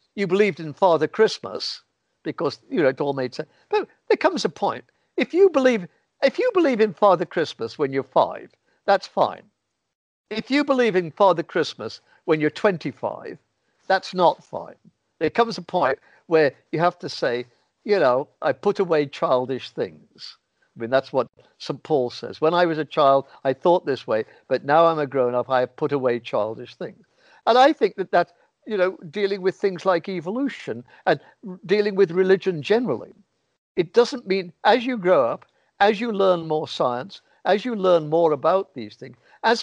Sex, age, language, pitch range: male, 60-79, Persian, 155-220 Hz